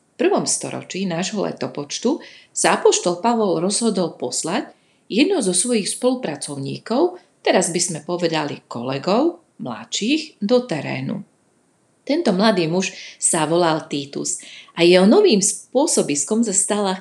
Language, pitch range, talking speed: Slovak, 165-230 Hz, 115 wpm